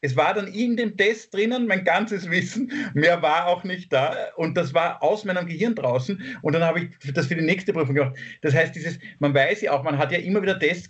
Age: 50-69